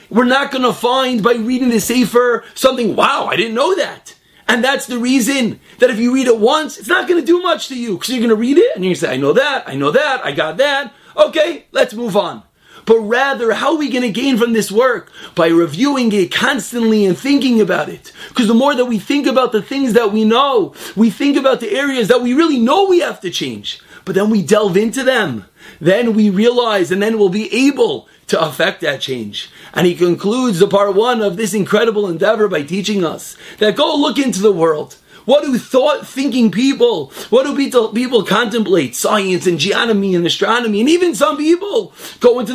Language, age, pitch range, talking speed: English, 30-49, 200-270 Hz, 220 wpm